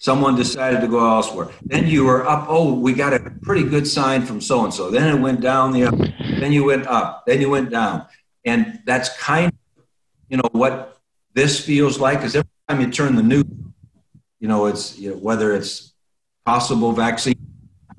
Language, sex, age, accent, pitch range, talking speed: English, male, 50-69, American, 115-135 Hz, 195 wpm